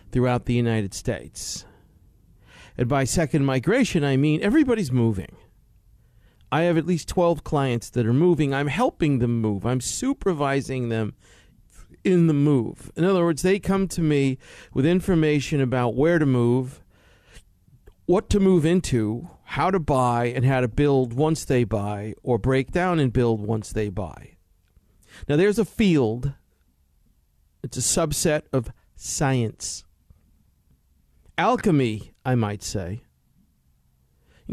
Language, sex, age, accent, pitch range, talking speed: English, male, 50-69, American, 105-160 Hz, 140 wpm